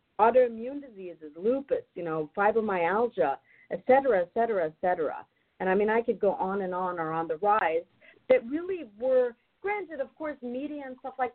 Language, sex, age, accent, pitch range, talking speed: English, female, 50-69, American, 195-275 Hz, 185 wpm